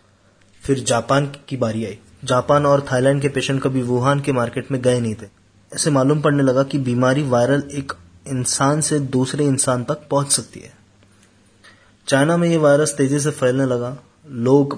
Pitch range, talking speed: 110-135 Hz, 175 wpm